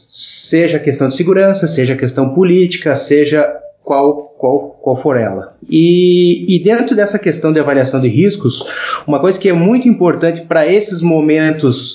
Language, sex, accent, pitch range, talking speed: Portuguese, male, Brazilian, 140-195 Hz, 160 wpm